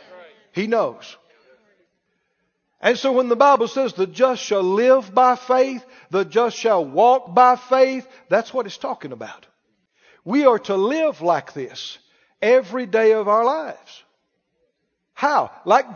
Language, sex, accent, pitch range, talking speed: English, male, American, 200-265 Hz, 145 wpm